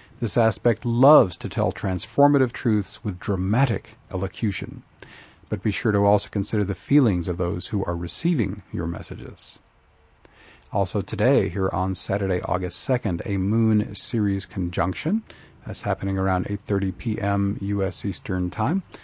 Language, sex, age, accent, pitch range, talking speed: English, male, 40-59, American, 95-110 Hz, 140 wpm